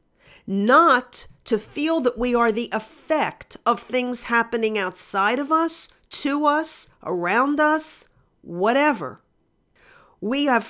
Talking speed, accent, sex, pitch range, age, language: 120 wpm, American, female, 205-285 Hz, 50-69, English